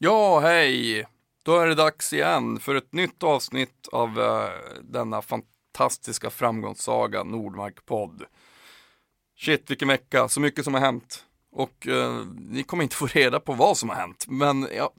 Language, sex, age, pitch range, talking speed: Swedish, male, 30-49, 120-160 Hz, 150 wpm